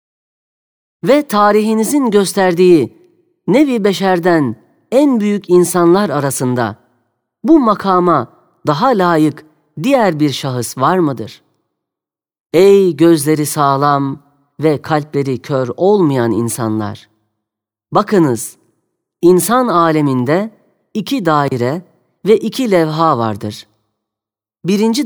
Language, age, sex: Turkish, 40-59, female